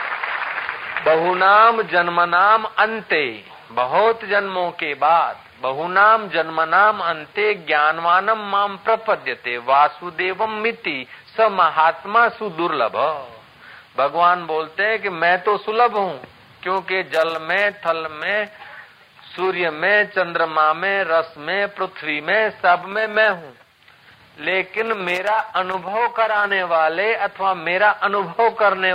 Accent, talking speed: native, 110 wpm